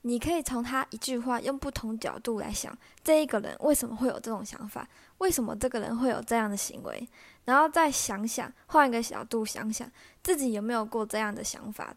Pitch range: 220-260 Hz